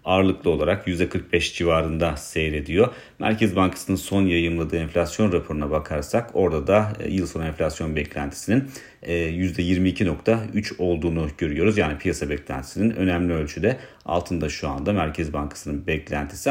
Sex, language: male, Turkish